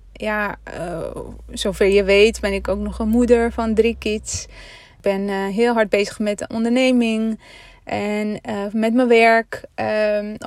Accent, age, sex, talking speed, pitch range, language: Dutch, 20-39, female, 160 wpm, 205-230 Hz, Dutch